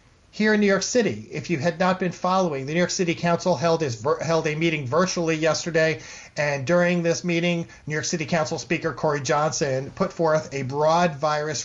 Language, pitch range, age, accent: English, 145-175 Hz, 40-59, American